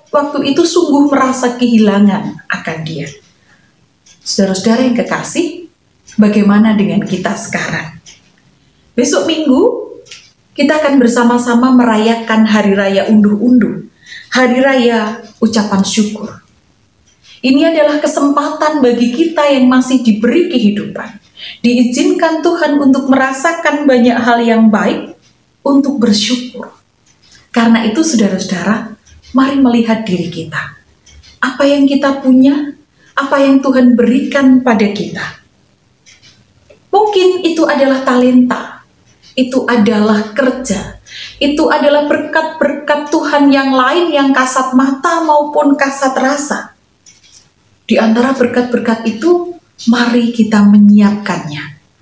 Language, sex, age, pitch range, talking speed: Indonesian, female, 30-49, 220-285 Hz, 105 wpm